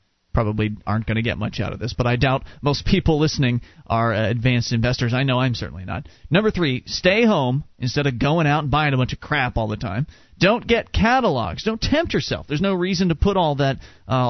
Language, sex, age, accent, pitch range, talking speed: English, male, 30-49, American, 120-170 Hz, 230 wpm